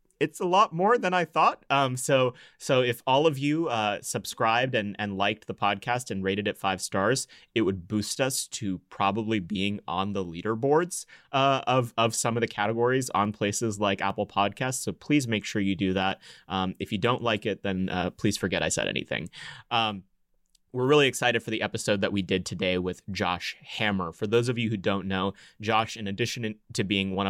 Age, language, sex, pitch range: 30-49, English, male, 95-115 Hz